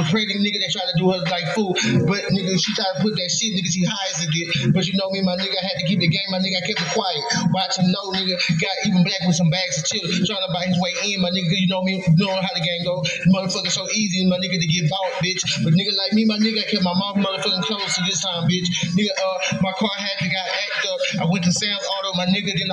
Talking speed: 295 wpm